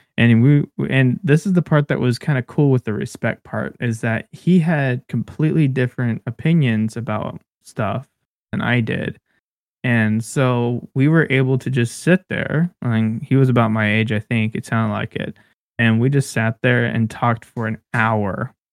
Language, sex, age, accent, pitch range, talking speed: English, male, 20-39, American, 115-140 Hz, 190 wpm